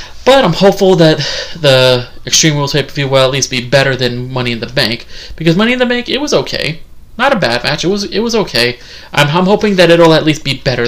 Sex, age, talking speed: male, 20-39, 255 wpm